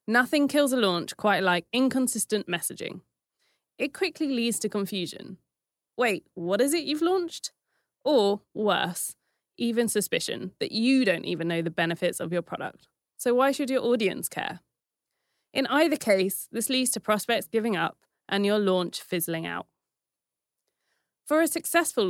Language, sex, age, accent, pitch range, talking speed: English, female, 20-39, British, 185-260 Hz, 150 wpm